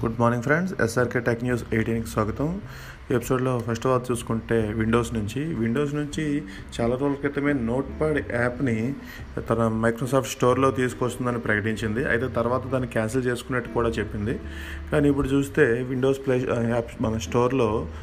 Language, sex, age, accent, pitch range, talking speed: Telugu, male, 30-49, native, 110-125 Hz, 145 wpm